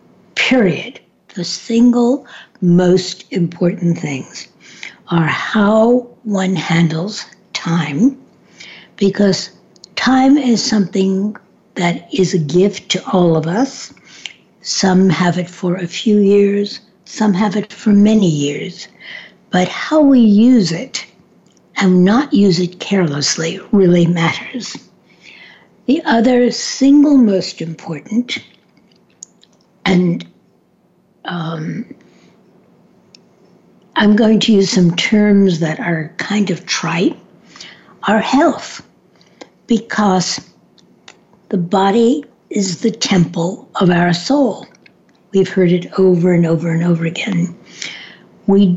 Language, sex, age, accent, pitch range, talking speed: English, female, 60-79, American, 175-220 Hz, 105 wpm